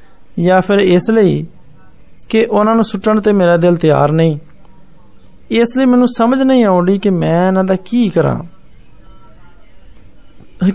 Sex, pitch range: male, 165-210 Hz